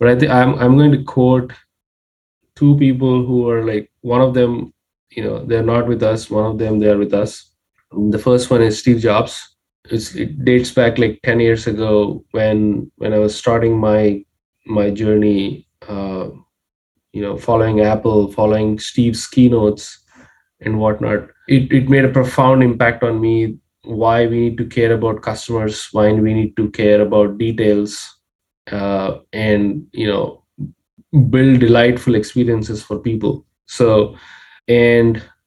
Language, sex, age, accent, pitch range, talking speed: English, male, 20-39, Indian, 105-120 Hz, 160 wpm